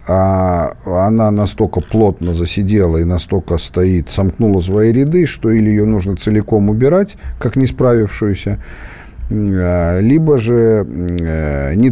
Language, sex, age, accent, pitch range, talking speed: Russian, male, 50-69, native, 95-140 Hz, 115 wpm